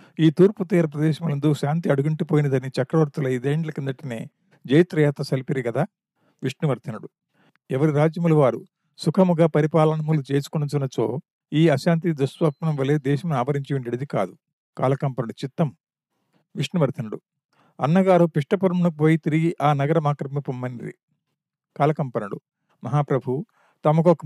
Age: 50-69